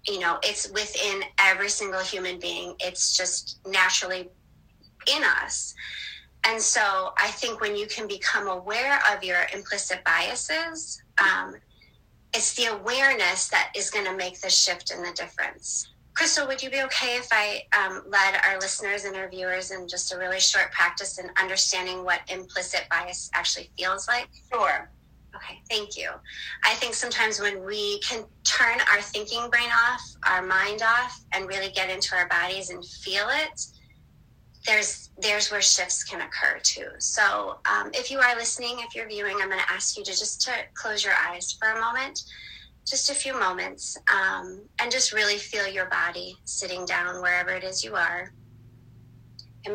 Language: English